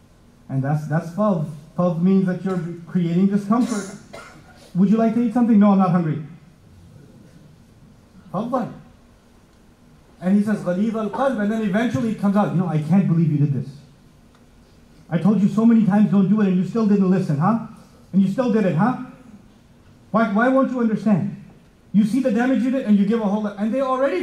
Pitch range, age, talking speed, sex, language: 200-270 Hz, 30-49, 200 wpm, male, English